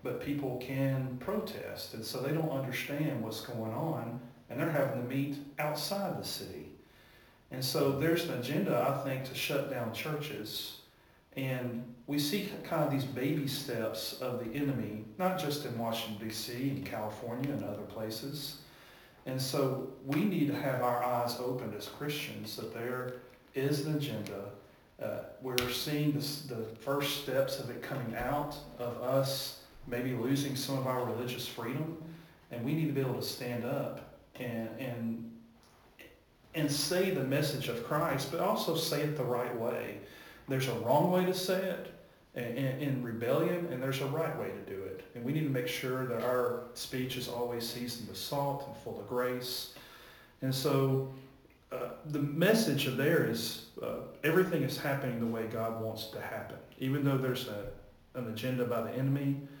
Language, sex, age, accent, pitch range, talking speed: English, male, 40-59, American, 120-145 Hz, 175 wpm